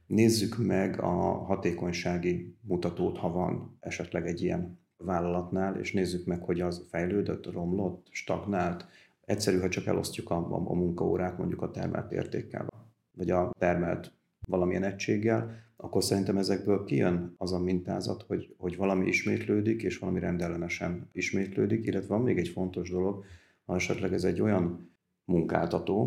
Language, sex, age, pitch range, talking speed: Hungarian, male, 40-59, 90-105 Hz, 145 wpm